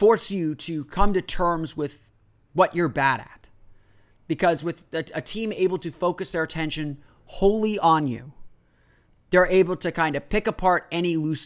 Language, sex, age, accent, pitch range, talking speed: English, male, 30-49, American, 125-180 Hz, 170 wpm